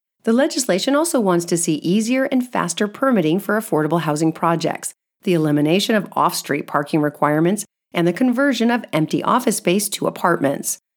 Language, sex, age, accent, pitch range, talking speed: English, female, 40-59, American, 155-225 Hz, 160 wpm